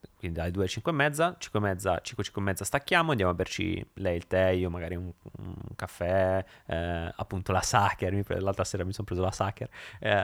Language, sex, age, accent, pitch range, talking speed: Italian, male, 30-49, native, 95-125 Hz, 225 wpm